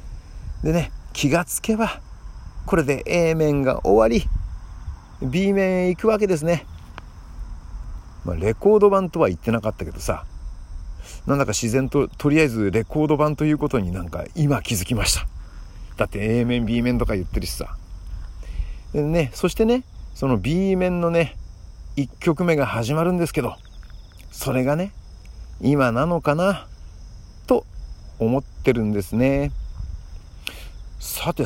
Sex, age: male, 50-69